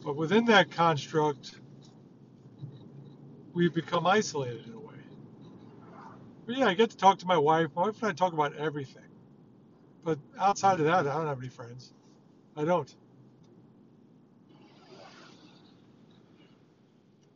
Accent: American